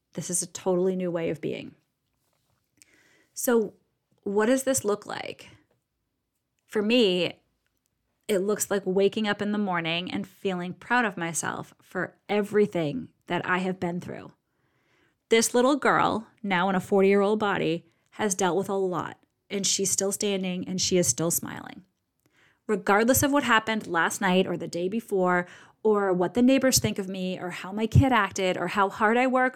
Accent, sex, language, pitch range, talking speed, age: American, female, English, 185-220 Hz, 175 wpm, 30-49